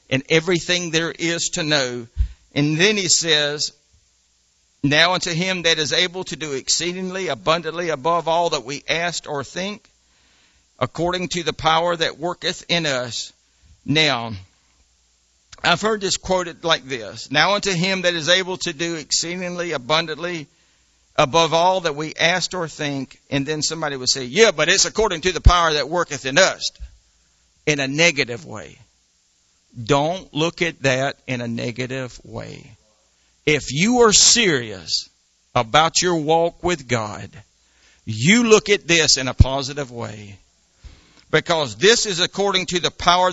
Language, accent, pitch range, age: English, American, 125-175 Hz, 60-79